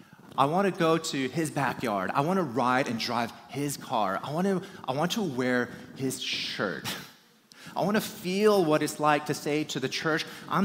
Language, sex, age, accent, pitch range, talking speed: English, male, 30-49, American, 120-185 Hz, 210 wpm